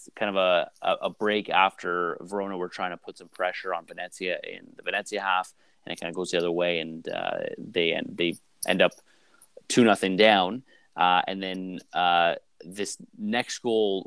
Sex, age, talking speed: male, 30-49, 190 wpm